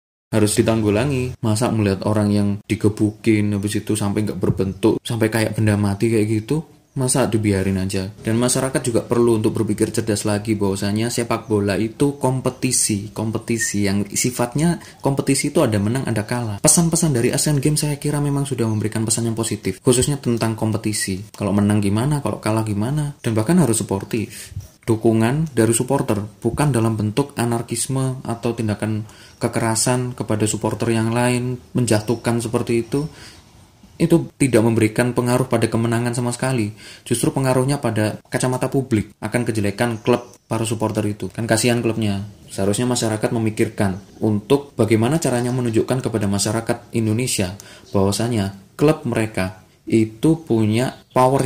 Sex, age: male, 20-39